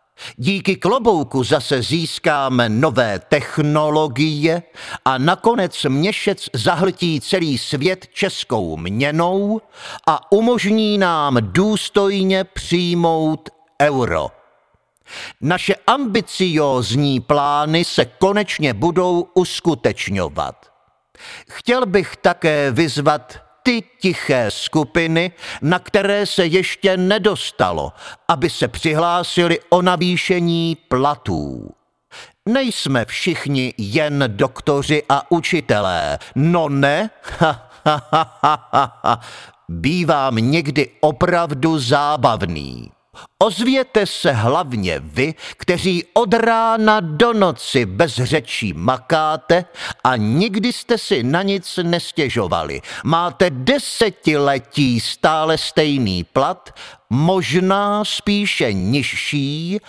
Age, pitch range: 50-69, 140-195 Hz